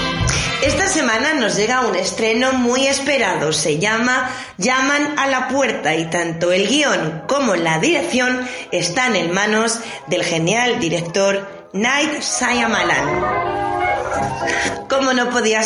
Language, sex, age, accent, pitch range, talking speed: Spanish, female, 20-39, Spanish, 195-270 Hz, 125 wpm